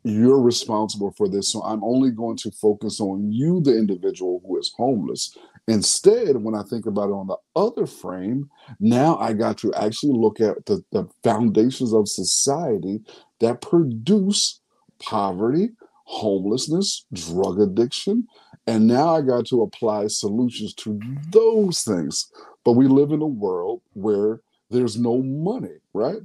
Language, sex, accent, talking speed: English, male, American, 150 wpm